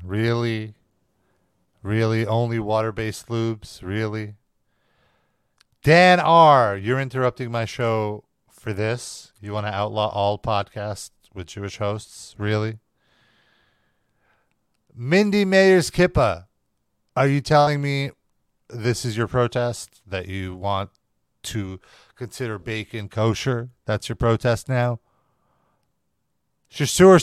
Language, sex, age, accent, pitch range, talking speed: English, male, 40-59, American, 105-135 Hz, 105 wpm